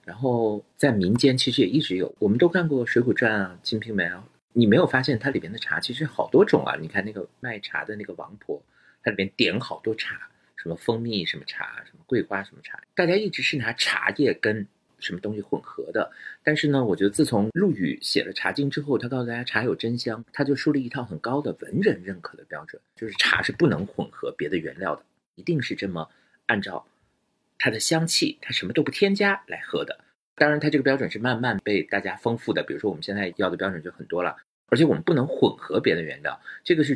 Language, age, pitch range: Chinese, 50-69, 105-155 Hz